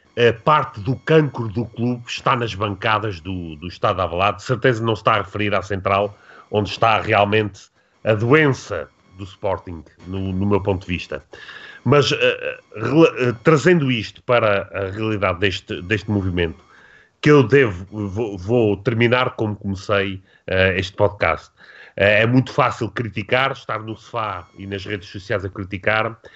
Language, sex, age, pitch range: Portuguese, male, 30-49, 100-125 Hz